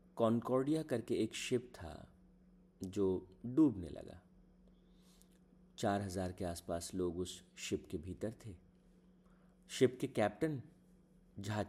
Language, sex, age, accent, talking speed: Hindi, male, 50-69, native, 115 wpm